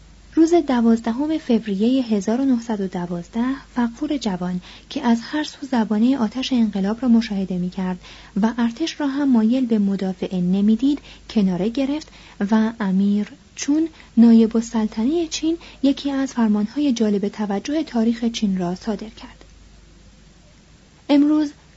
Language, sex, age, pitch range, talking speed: Persian, female, 30-49, 195-255 Hz, 120 wpm